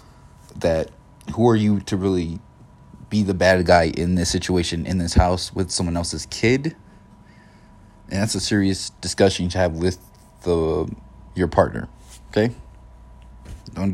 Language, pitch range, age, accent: English, 90-110 Hz, 30-49, American